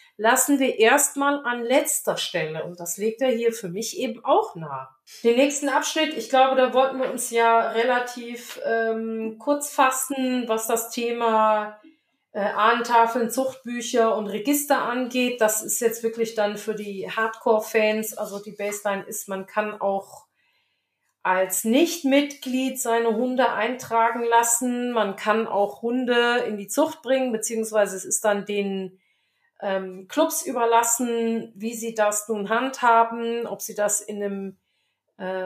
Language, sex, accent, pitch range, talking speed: German, female, German, 210-255 Hz, 145 wpm